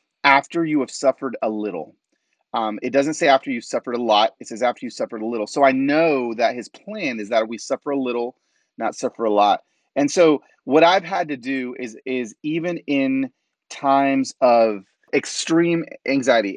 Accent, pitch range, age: American, 115-150 Hz, 30-49